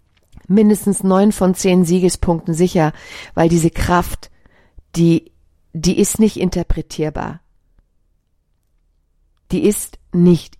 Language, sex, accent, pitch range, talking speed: German, female, German, 150-185 Hz, 95 wpm